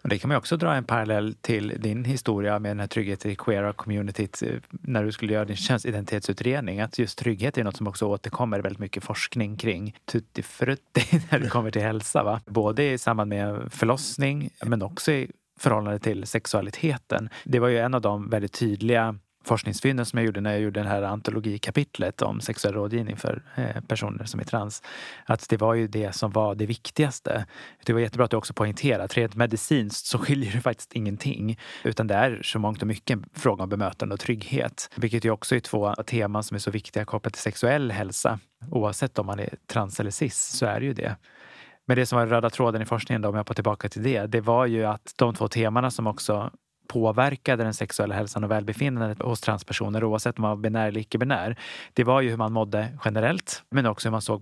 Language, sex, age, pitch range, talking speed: Swedish, male, 30-49, 105-125 Hz, 215 wpm